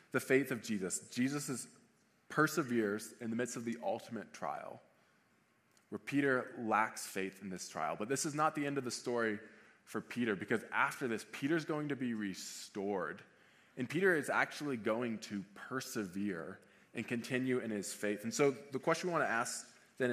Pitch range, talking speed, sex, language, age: 110-140 Hz, 180 wpm, male, English, 20-39